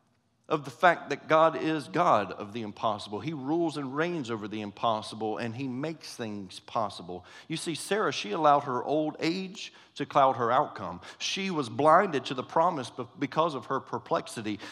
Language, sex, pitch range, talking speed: English, male, 130-165 Hz, 180 wpm